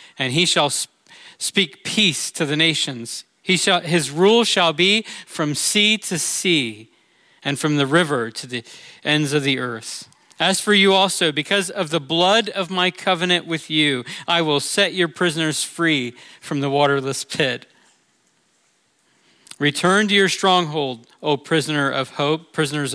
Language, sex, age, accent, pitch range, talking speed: English, male, 40-59, American, 140-175 Hz, 155 wpm